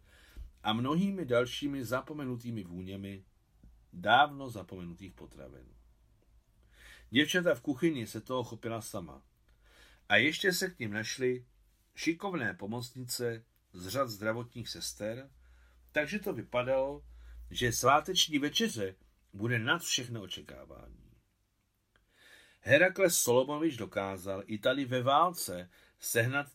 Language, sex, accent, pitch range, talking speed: Czech, male, native, 95-140 Hz, 100 wpm